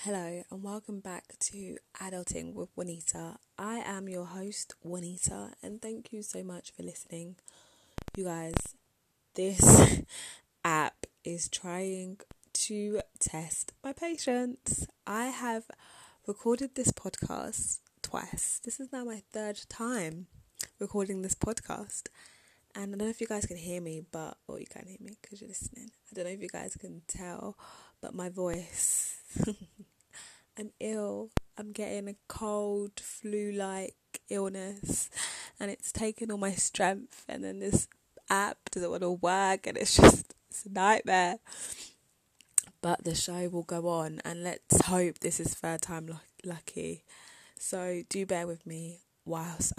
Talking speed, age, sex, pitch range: 150 wpm, 20-39, female, 170-210 Hz